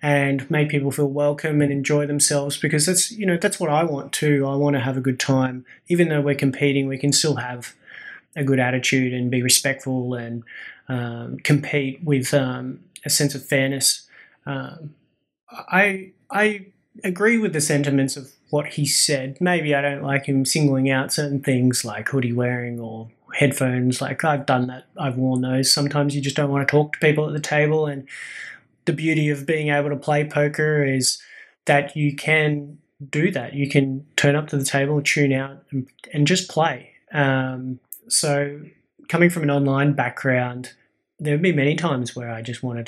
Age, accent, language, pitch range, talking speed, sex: 20-39, Australian, English, 130-150 Hz, 190 wpm, male